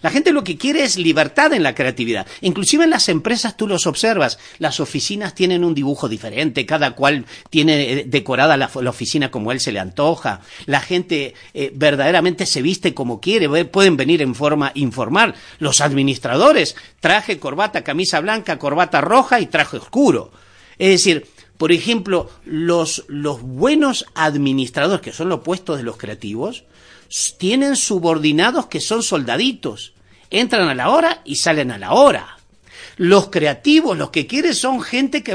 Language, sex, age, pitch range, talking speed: Spanish, male, 50-69, 145-225 Hz, 160 wpm